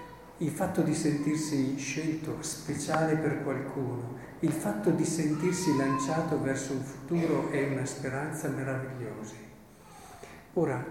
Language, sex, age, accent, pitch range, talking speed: Italian, male, 50-69, native, 125-150 Hz, 115 wpm